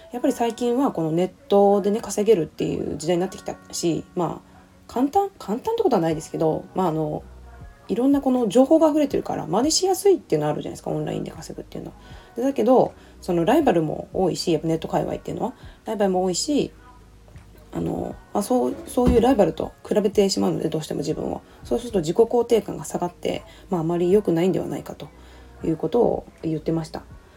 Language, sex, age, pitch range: Japanese, female, 20-39, 150-220 Hz